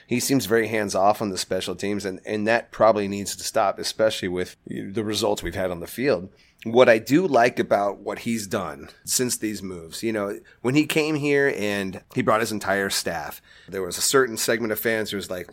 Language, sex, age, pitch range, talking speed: English, male, 30-49, 105-130 Hz, 220 wpm